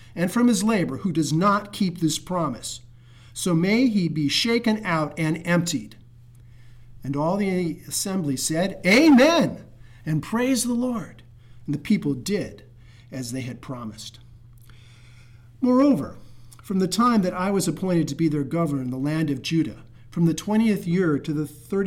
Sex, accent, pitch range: male, American, 120-200 Hz